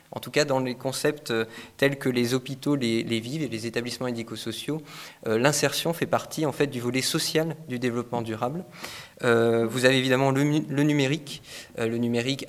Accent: French